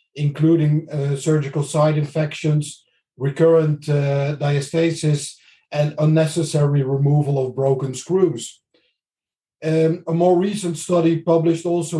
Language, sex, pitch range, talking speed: English, male, 140-160 Hz, 105 wpm